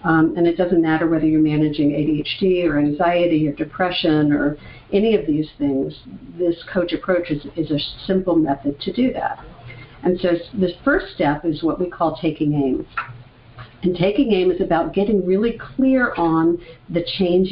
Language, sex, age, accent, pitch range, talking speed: English, female, 50-69, American, 150-190 Hz, 175 wpm